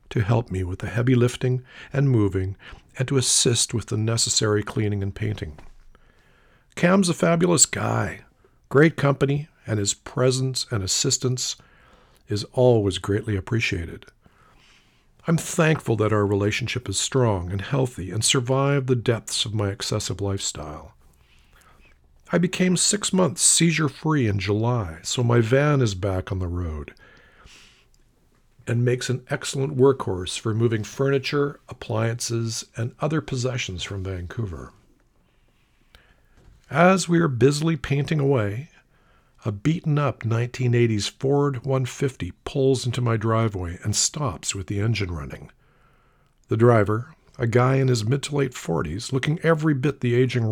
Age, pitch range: 50-69, 105-135 Hz